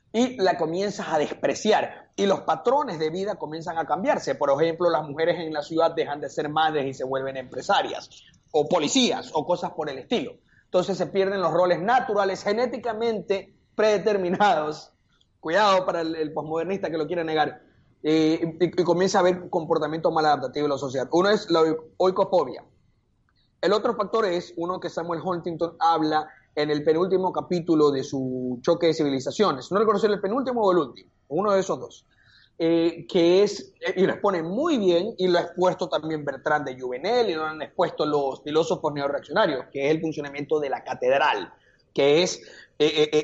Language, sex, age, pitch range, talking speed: Spanish, male, 30-49, 155-185 Hz, 180 wpm